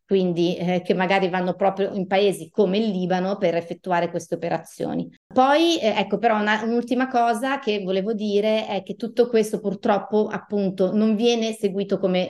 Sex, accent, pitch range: female, native, 175-210 Hz